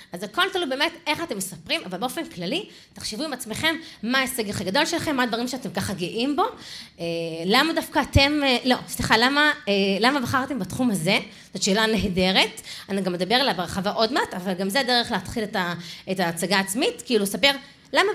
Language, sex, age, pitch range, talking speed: Hebrew, female, 30-49, 195-315 Hz, 200 wpm